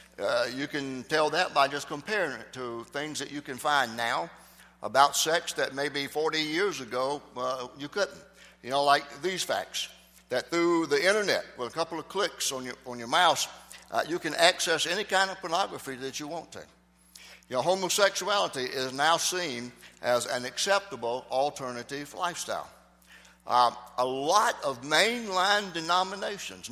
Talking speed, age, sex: 165 wpm, 60-79, male